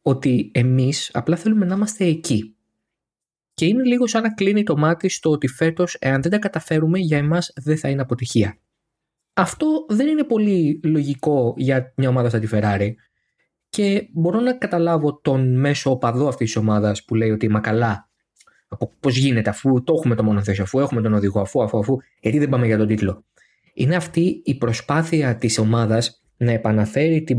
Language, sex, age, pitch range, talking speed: Greek, male, 20-39, 115-160 Hz, 180 wpm